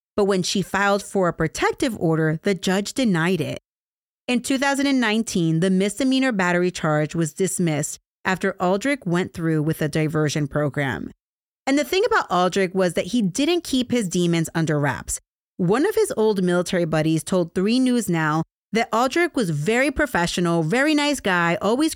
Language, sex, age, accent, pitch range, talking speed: English, female, 30-49, American, 160-225 Hz, 165 wpm